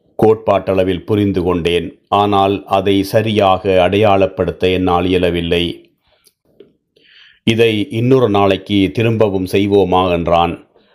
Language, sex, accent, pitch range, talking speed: Tamil, male, native, 90-105 Hz, 80 wpm